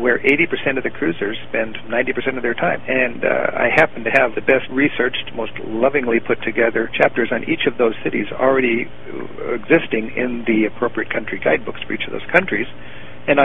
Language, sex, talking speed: English, male, 190 wpm